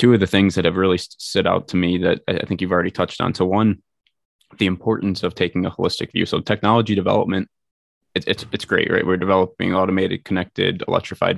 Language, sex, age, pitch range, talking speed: English, male, 20-39, 90-105 Hz, 210 wpm